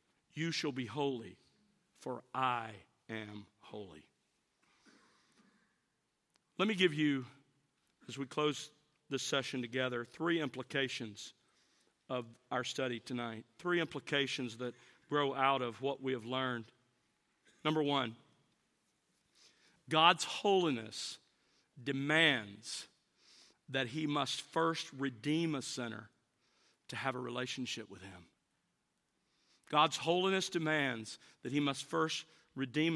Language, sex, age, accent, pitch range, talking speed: English, male, 50-69, American, 125-155 Hz, 110 wpm